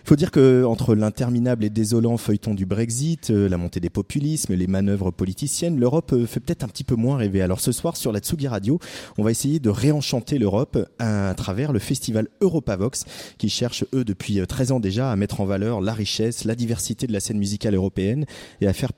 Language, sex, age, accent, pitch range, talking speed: French, male, 30-49, French, 105-130 Hz, 215 wpm